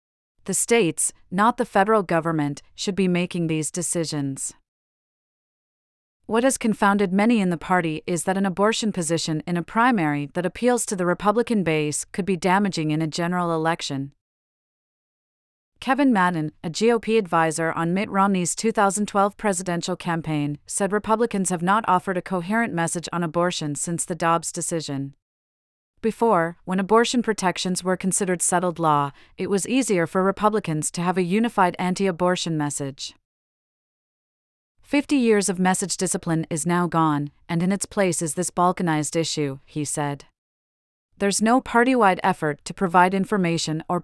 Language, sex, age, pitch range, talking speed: English, female, 30-49, 160-200 Hz, 150 wpm